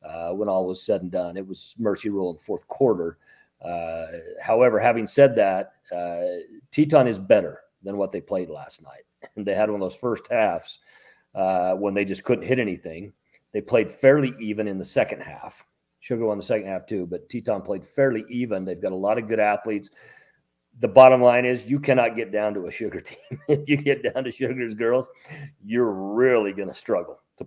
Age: 40-59